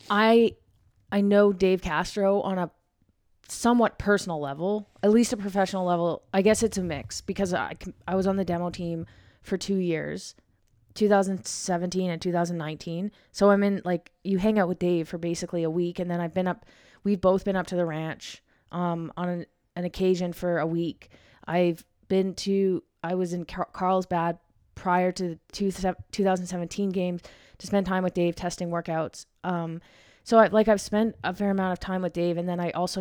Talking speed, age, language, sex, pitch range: 190 wpm, 20-39, English, female, 165-195 Hz